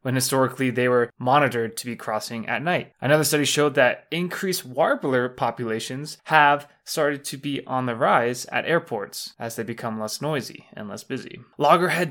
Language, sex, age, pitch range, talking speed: English, male, 20-39, 120-150 Hz, 175 wpm